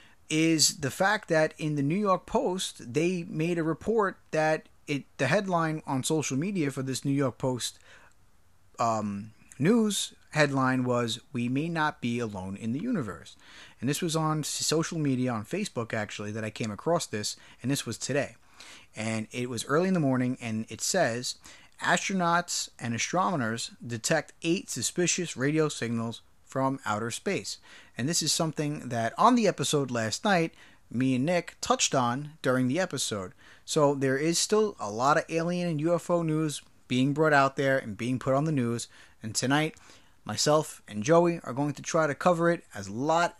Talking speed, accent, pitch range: 180 wpm, American, 120-160 Hz